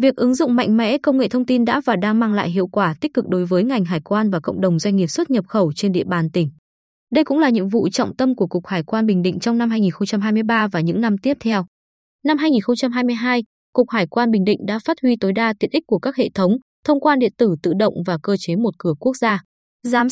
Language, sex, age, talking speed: Vietnamese, female, 20-39, 260 wpm